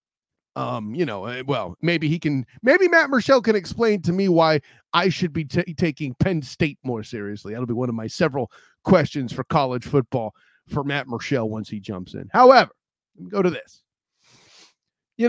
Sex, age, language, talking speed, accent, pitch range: male, 30-49, English, 190 wpm, American, 135-175 Hz